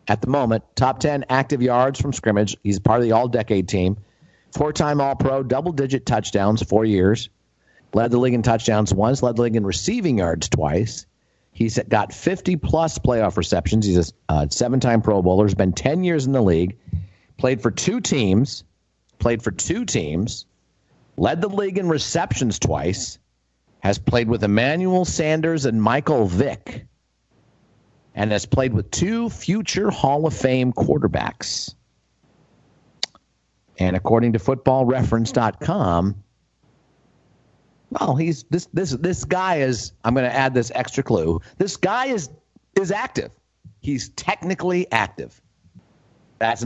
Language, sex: English, male